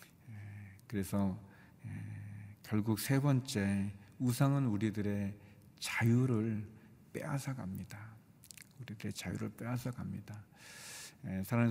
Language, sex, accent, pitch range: Korean, male, native, 100-125 Hz